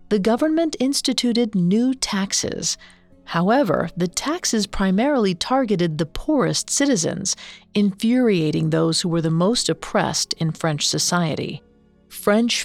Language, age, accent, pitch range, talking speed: English, 40-59, American, 165-215 Hz, 115 wpm